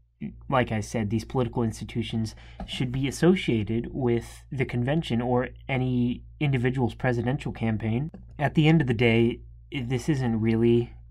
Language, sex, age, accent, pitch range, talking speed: English, male, 20-39, American, 110-125 Hz, 140 wpm